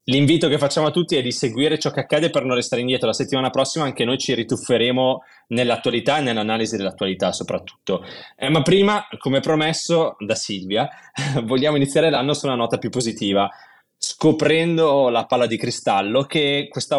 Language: Italian